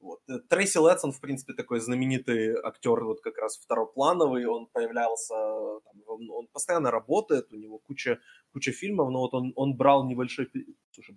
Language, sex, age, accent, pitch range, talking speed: Ukrainian, male, 20-39, native, 125-160 Hz, 160 wpm